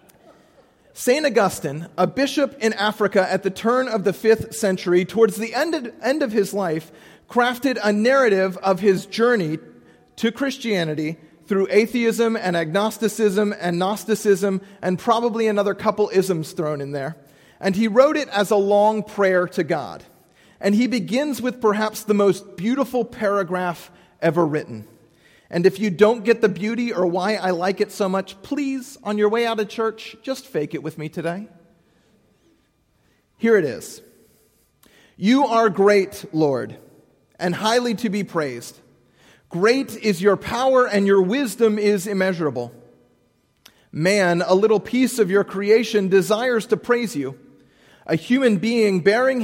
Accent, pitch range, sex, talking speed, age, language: American, 185-230 Hz, male, 155 wpm, 40-59, English